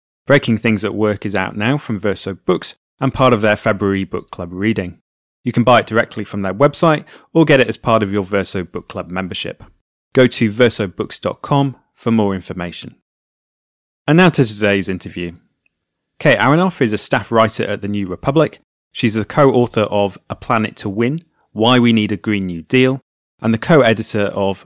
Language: English